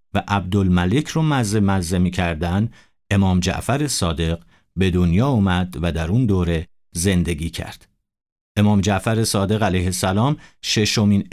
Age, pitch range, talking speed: 50-69, 90-115 Hz, 130 wpm